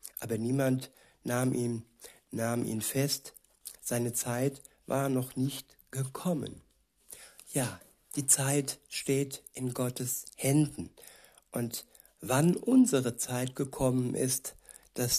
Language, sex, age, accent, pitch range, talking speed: German, male, 60-79, German, 125-140 Hz, 105 wpm